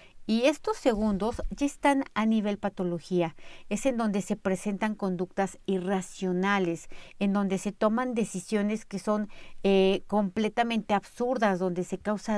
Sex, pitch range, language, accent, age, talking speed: female, 185-225 Hz, Spanish, Mexican, 50-69, 135 wpm